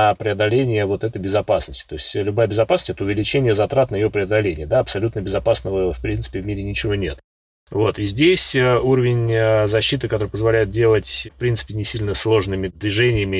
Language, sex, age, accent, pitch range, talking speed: Russian, male, 30-49, native, 95-120 Hz, 170 wpm